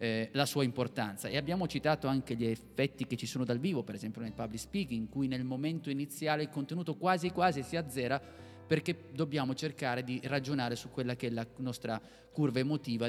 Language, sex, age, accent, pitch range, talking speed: Italian, male, 30-49, native, 115-145 Hz, 195 wpm